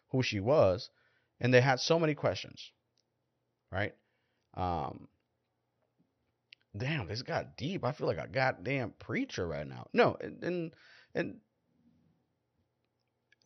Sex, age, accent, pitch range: male, 30-49, American, 95-125 Hz